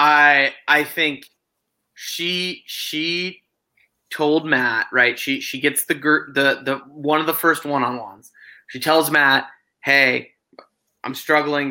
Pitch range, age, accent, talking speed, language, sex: 130-160 Hz, 20-39, American, 130 wpm, English, male